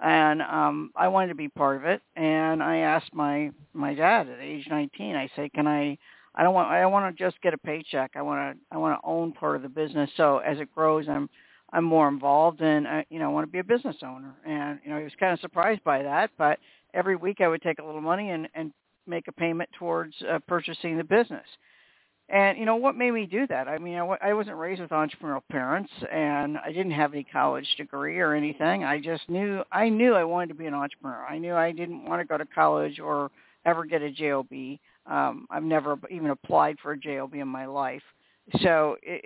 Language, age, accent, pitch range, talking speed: English, 60-79, American, 145-170 Hz, 235 wpm